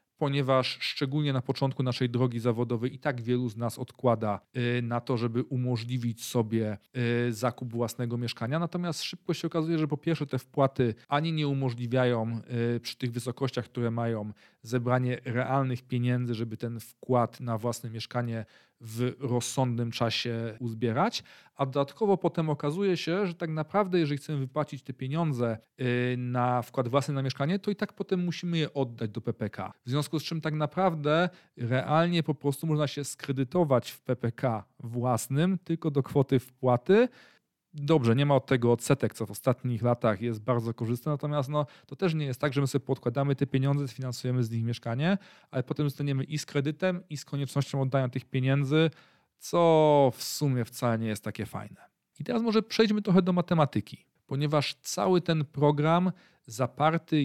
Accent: native